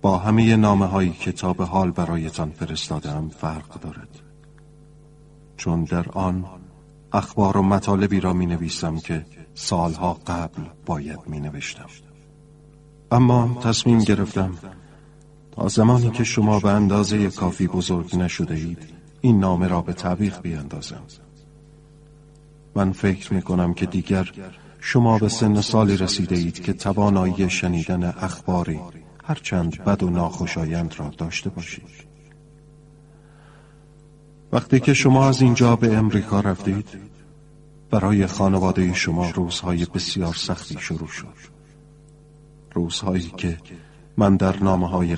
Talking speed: 120 wpm